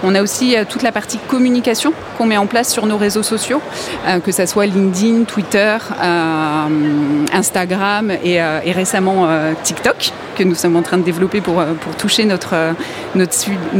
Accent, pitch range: French, 175-215 Hz